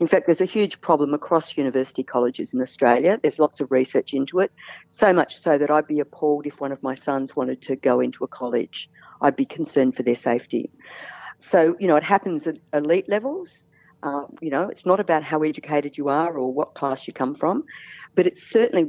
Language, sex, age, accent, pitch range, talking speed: English, female, 50-69, Australian, 140-180 Hz, 215 wpm